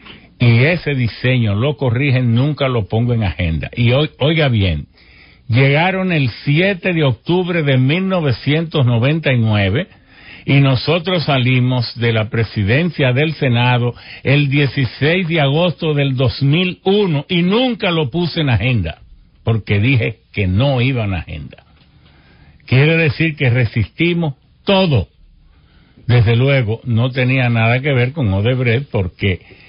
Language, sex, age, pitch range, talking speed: English, male, 60-79, 110-145 Hz, 125 wpm